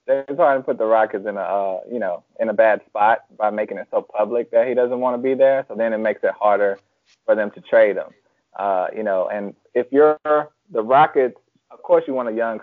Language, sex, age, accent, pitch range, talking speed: English, male, 20-39, American, 110-150 Hz, 245 wpm